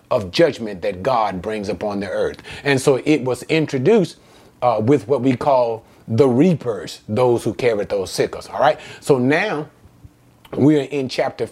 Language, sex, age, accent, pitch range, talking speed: English, male, 30-49, American, 125-165 Hz, 155 wpm